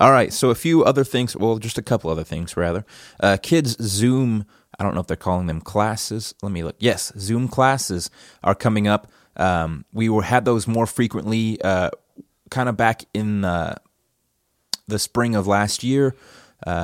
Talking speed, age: 180 wpm, 30-49